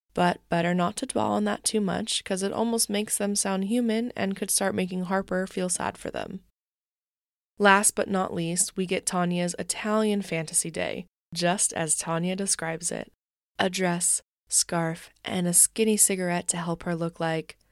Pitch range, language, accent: 175-220 Hz, English, American